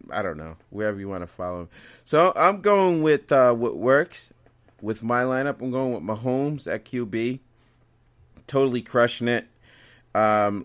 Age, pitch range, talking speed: 30-49, 115-135 Hz, 165 wpm